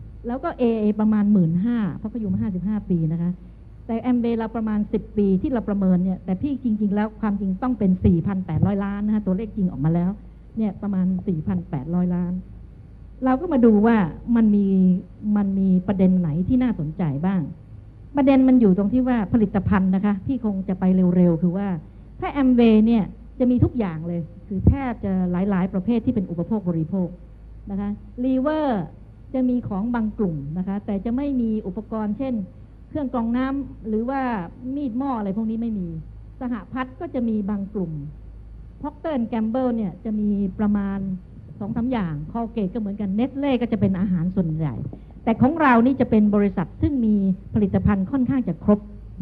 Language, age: Thai, 60-79